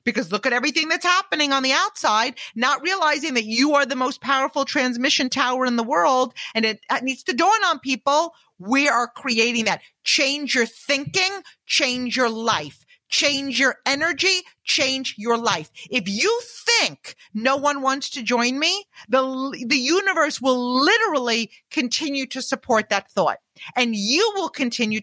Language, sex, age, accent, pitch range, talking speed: English, female, 40-59, American, 235-315 Hz, 165 wpm